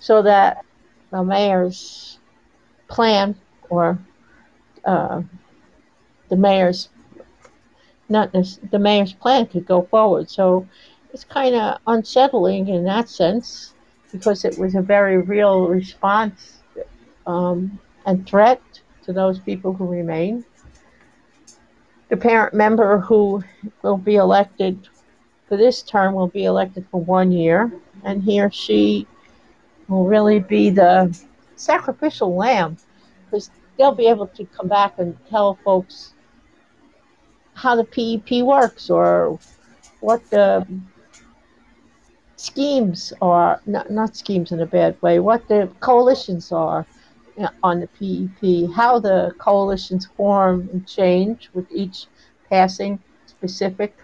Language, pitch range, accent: English, 185-225 Hz, American